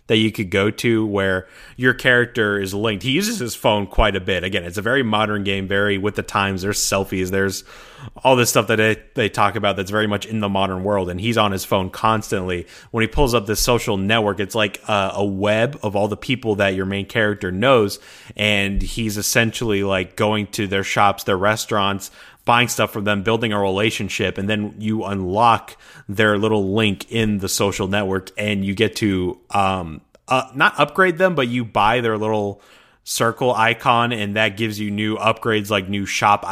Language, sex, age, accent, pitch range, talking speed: English, male, 30-49, American, 100-115 Hz, 200 wpm